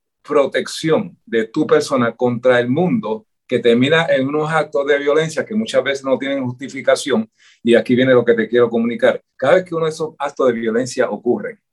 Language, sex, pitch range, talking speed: Spanish, male, 120-160 Hz, 195 wpm